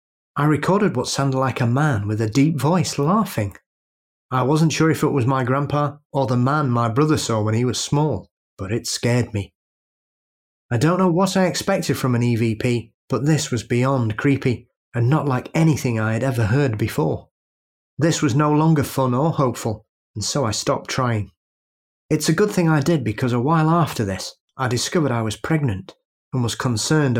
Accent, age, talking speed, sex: British, 30-49, 195 wpm, male